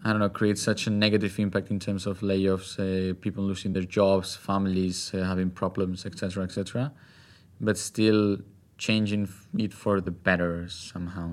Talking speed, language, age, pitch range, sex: 170 wpm, English, 20-39, 95-115 Hz, male